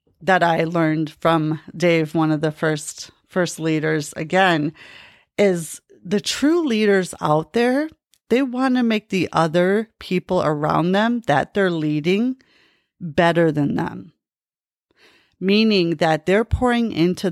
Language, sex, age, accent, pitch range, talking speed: English, female, 30-49, American, 160-200 Hz, 130 wpm